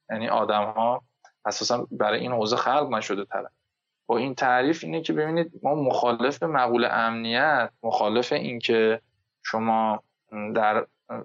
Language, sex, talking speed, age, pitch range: Persian, male, 135 wpm, 20-39, 110-130 Hz